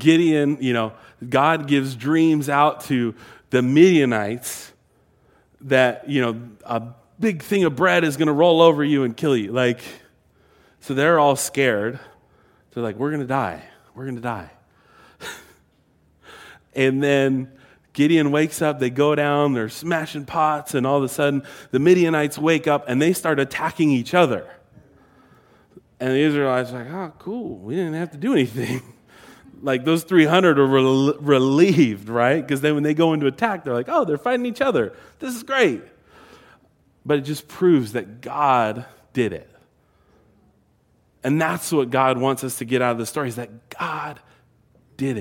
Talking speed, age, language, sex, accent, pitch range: 170 wpm, 30-49, English, male, American, 120-155 Hz